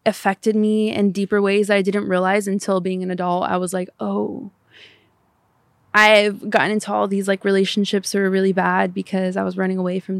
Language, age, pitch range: English, 20-39, 185-205 Hz